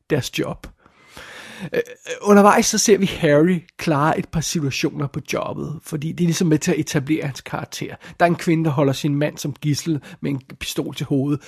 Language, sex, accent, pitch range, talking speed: Danish, male, native, 150-180 Hz, 200 wpm